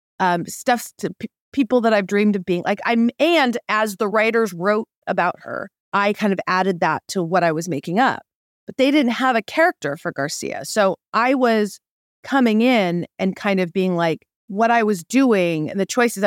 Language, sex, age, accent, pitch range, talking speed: English, female, 40-59, American, 195-255 Hz, 200 wpm